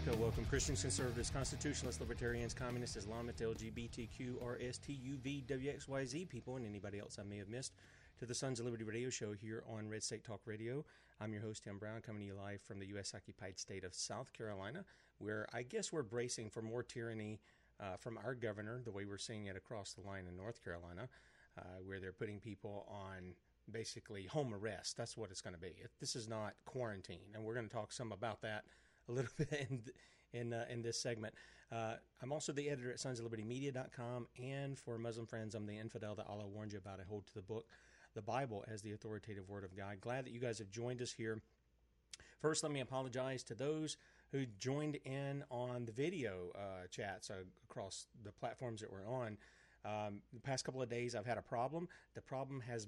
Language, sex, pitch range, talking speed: English, male, 105-125 Hz, 205 wpm